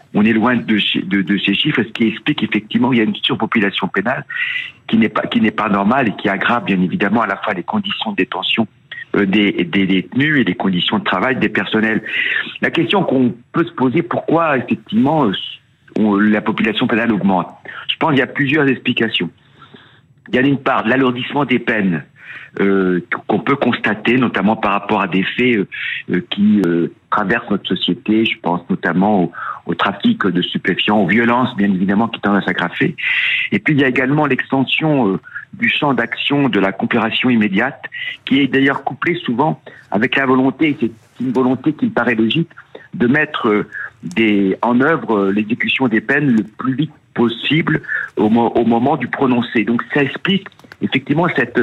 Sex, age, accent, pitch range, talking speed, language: male, 50-69, French, 105-140 Hz, 190 wpm, French